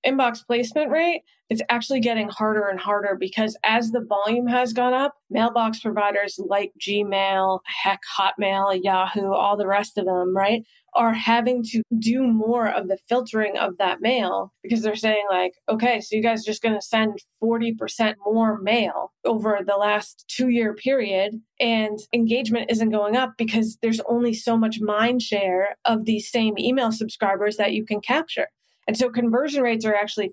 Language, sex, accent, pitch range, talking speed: English, female, American, 205-235 Hz, 175 wpm